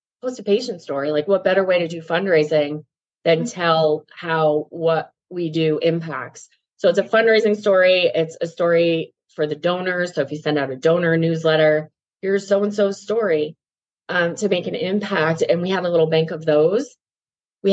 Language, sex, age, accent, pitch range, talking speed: English, female, 30-49, American, 155-185 Hz, 190 wpm